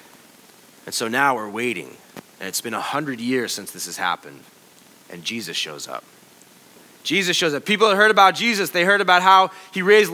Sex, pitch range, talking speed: male, 155-230 Hz, 195 wpm